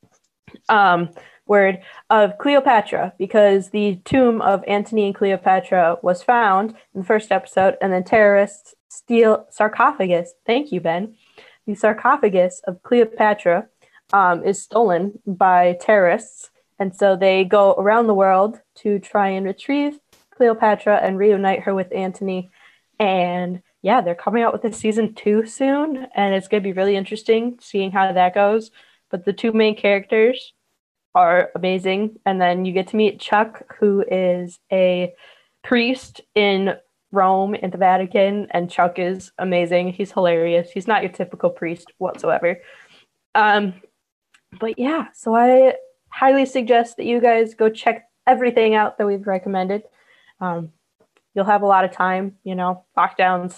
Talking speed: 150 wpm